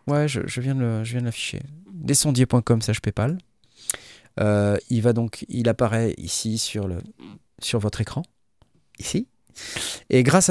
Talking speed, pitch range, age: 145 wpm, 105-140 Hz, 30-49